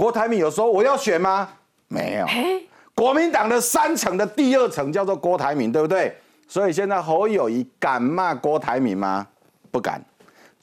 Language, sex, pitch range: Chinese, male, 140-215 Hz